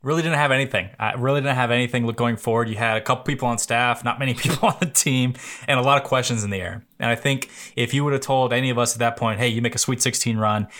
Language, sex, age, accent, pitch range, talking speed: English, male, 20-39, American, 115-135 Hz, 295 wpm